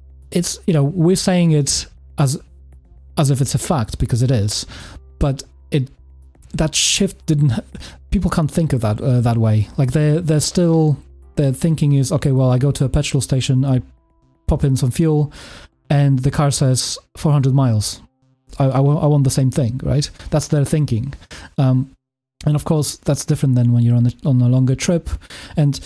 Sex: male